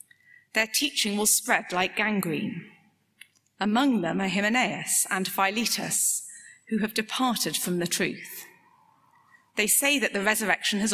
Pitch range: 180-245 Hz